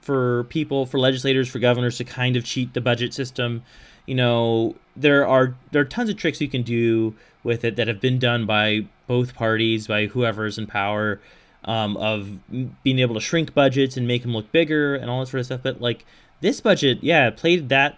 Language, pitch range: English, 105-135 Hz